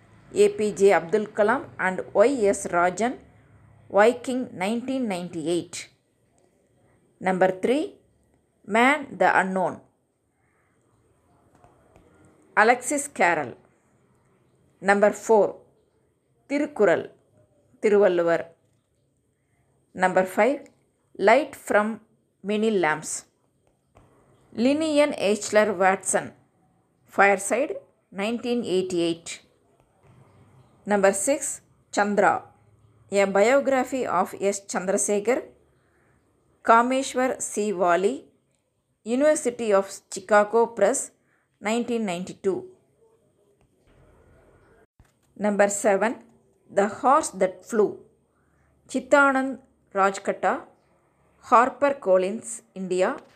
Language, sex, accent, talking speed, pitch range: Tamil, female, native, 65 wpm, 185-245 Hz